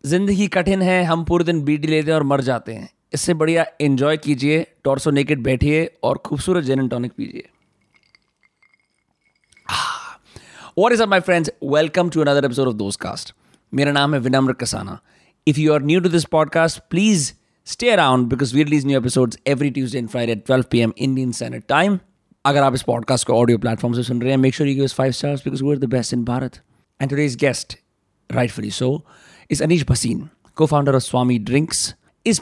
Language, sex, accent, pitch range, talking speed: Hindi, male, native, 125-155 Hz, 105 wpm